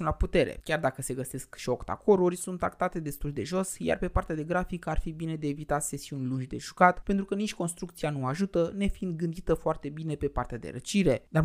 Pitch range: 140-185 Hz